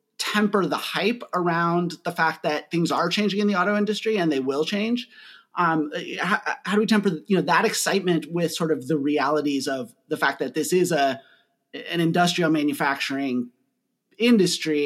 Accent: American